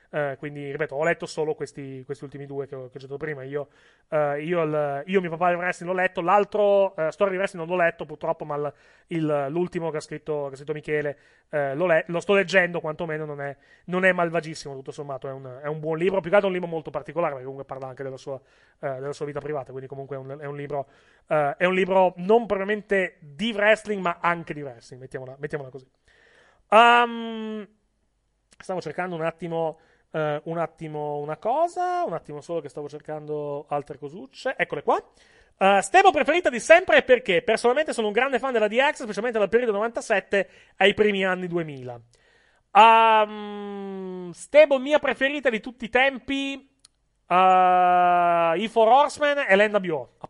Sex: male